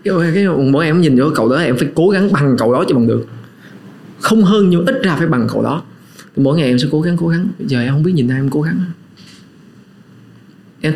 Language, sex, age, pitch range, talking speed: Vietnamese, male, 20-39, 125-180 Hz, 255 wpm